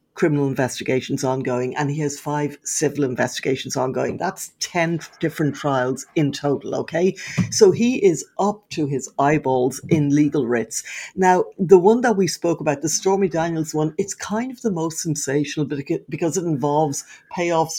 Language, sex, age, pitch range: English, female, 60-79, 140-180 Hz